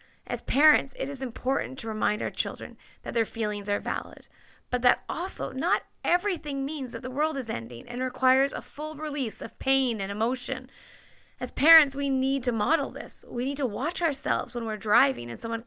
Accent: American